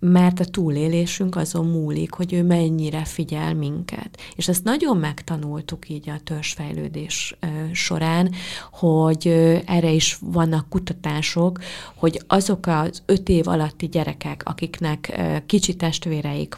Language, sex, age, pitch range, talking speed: Hungarian, female, 30-49, 155-180 Hz, 120 wpm